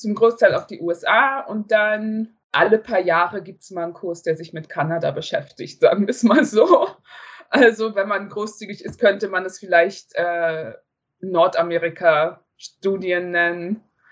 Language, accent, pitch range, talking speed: German, German, 170-210 Hz, 155 wpm